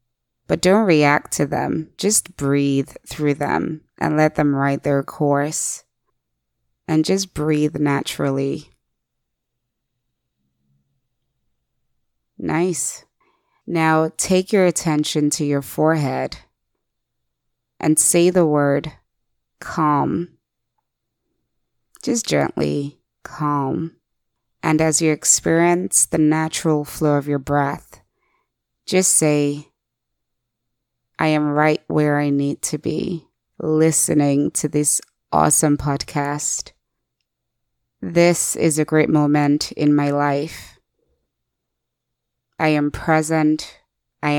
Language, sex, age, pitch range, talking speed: English, female, 20-39, 140-160 Hz, 95 wpm